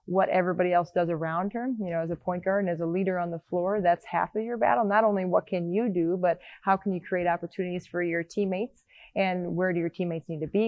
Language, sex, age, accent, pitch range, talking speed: English, female, 20-39, American, 170-190 Hz, 265 wpm